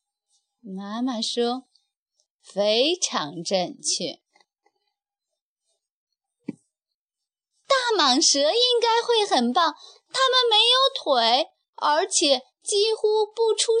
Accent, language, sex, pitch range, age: native, Chinese, female, 265-430 Hz, 20-39